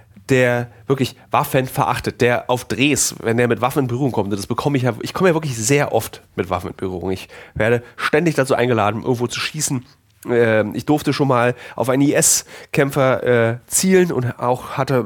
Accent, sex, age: German, male, 30-49